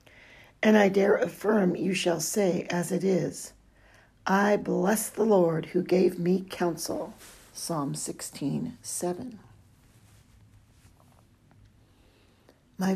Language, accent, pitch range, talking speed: English, American, 165-205 Hz, 100 wpm